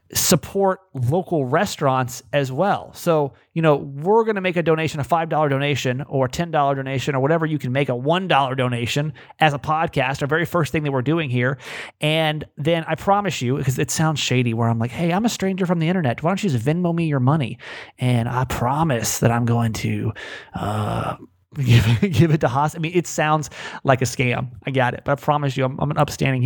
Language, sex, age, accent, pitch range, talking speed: English, male, 30-49, American, 130-165 Hz, 220 wpm